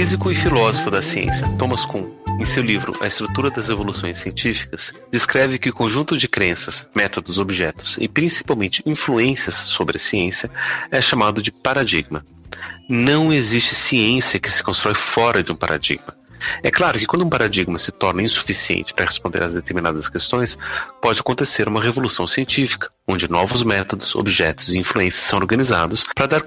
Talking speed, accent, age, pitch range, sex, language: 165 wpm, Brazilian, 40-59, 95-125 Hz, male, Portuguese